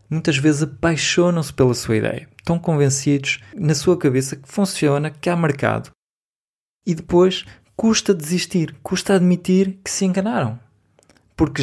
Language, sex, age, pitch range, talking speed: Portuguese, male, 20-39, 125-160 Hz, 135 wpm